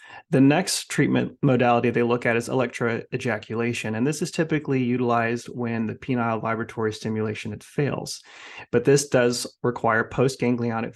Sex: male